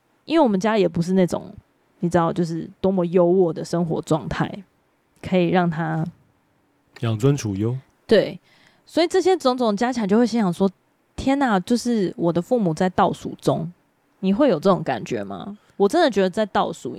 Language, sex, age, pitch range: Chinese, female, 20-39, 170-210 Hz